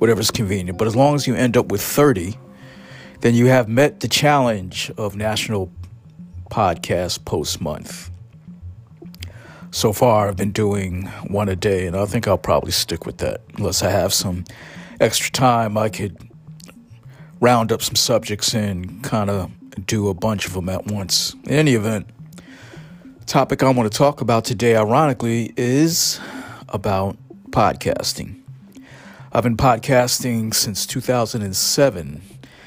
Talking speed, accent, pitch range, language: 145 wpm, American, 100-125 Hz, English